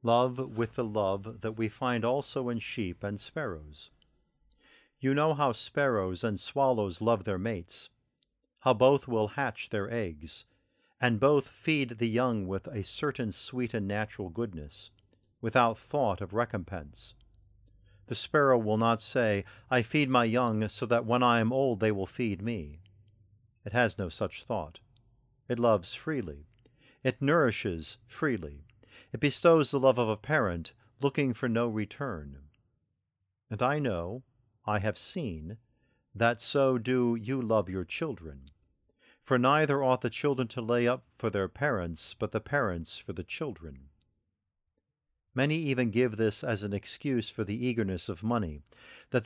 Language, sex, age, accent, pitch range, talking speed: English, male, 50-69, American, 100-125 Hz, 155 wpm